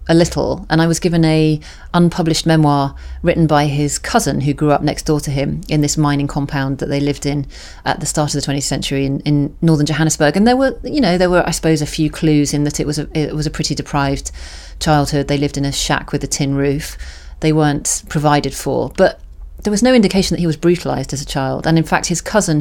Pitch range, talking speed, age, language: 140-160 Hz, 245 wpm, 30-49, English